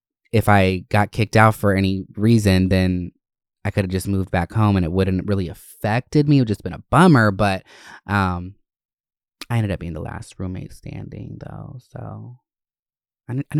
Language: English